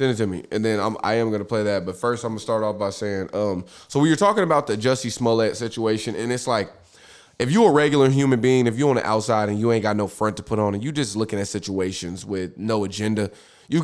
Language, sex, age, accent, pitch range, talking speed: English, male, 20-39, American, 110-180 Hz, 280 wpm